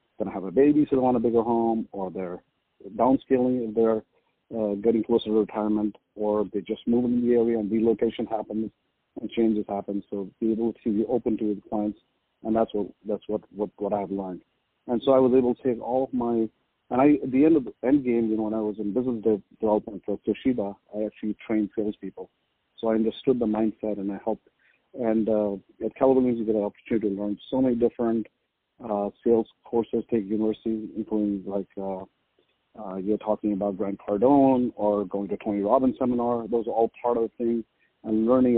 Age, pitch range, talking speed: 40-59, 105-120 Hz, 210 wpm